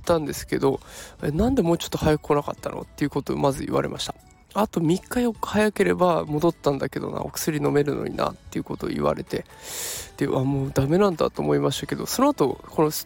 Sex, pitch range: male, 150-190 Hz